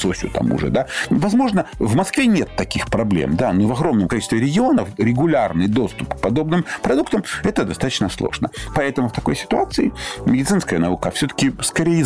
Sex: male